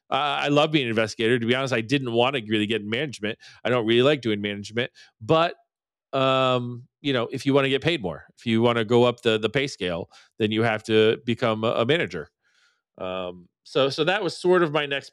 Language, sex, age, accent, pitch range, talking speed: English, male, 40-59, American, 110-130 Hz, 240 wpm